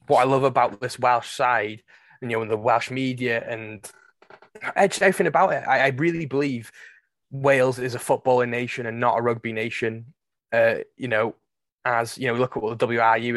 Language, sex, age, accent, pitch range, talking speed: English, male, 20-39, British, 115-135 Hz, 200 wpm